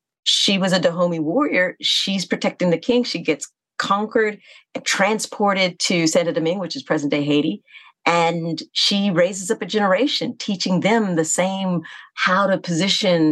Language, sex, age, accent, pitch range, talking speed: English, female, 40-59, American, 160-260 Hz, 155 wpm